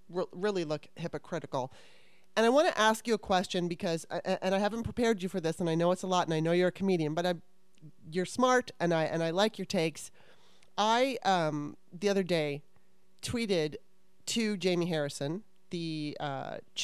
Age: 30-49